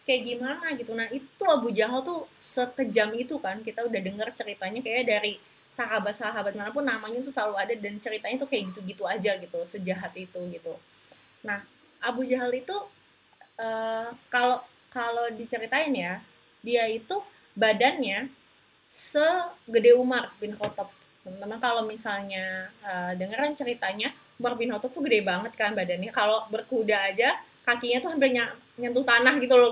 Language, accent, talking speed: Indonesian, native, 150 wpm